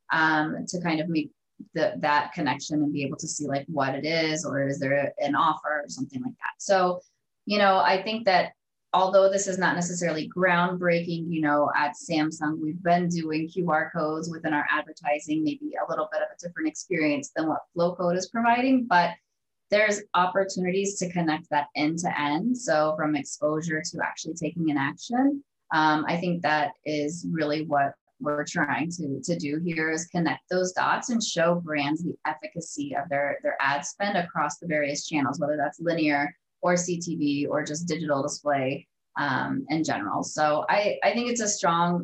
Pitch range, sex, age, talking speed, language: 150-180 Hz, female, 20-39, 185 wpm, English